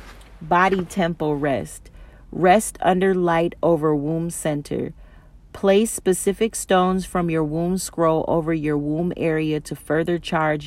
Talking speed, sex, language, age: 130 wpm, female, English, 40-59